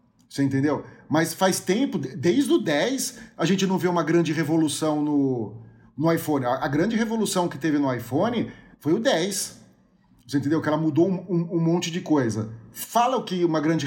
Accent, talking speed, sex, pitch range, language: Brazilian, 195 wpm, male, 145-195 Hz, Portuguese